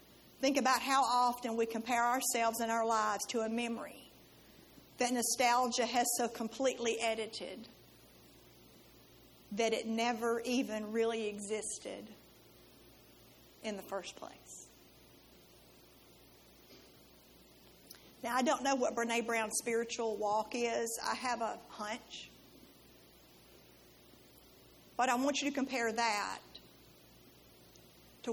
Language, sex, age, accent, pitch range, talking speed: English, female, 50-69, American, 225-265 Hz, 110 wpm